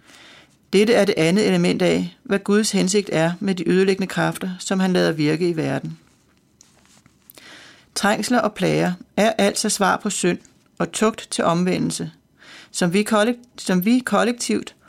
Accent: native